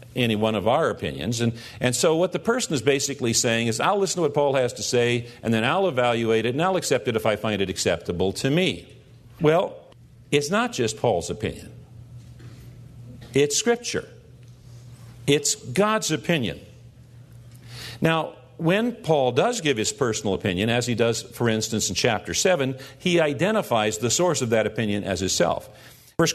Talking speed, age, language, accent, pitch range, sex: 175 wpm, 50-69, English, American, 115-150 Hz, male